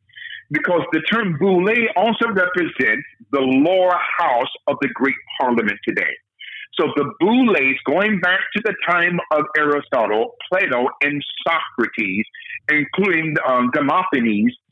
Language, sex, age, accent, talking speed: English, male, 50-69, American, 120 wpm